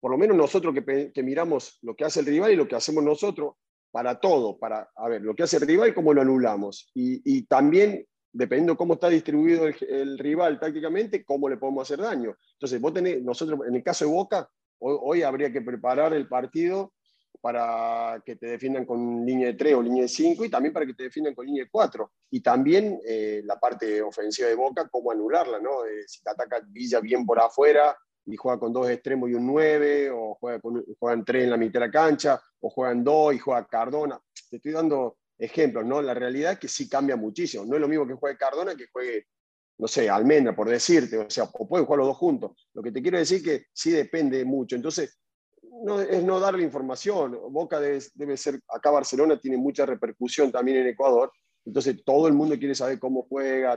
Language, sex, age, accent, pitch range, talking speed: Spanish, male, 40-59, Argentinian, 125-170 Hz, 220 wpm